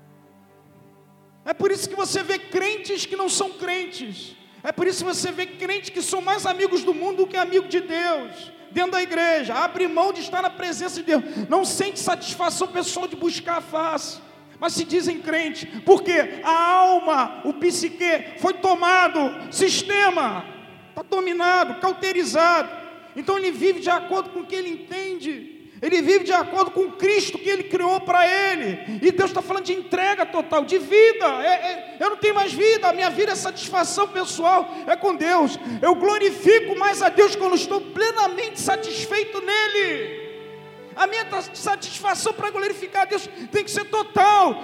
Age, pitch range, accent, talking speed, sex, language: 40-59, 340-395 Hz, Brazilian, 175 wpm, male, Portuguese